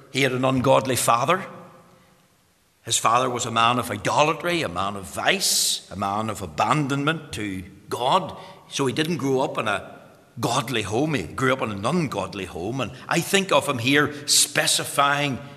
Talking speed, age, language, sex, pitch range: 175 wpm, 60-79, English, male, 130-205 Hz